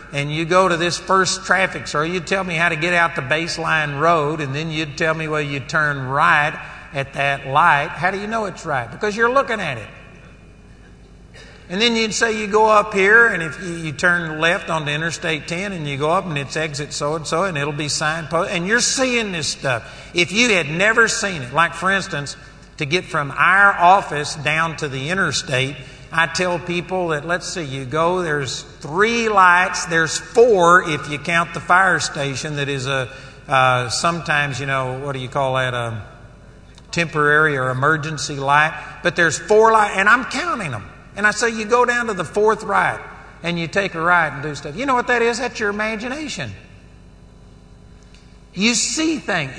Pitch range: 145-195 Hz